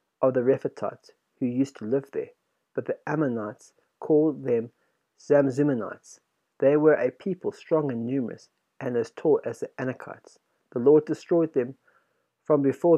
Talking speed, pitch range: 155 wpm, 125-165 Hz